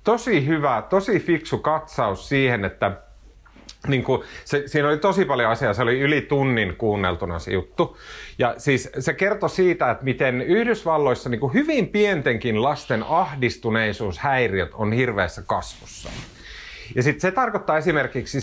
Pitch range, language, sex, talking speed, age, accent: 110-165 Hz, Finnish, male, 140 wpm, 30-49, native